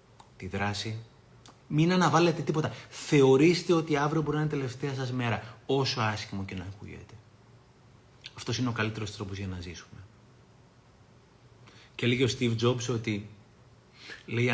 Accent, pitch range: native, 110-135 Hz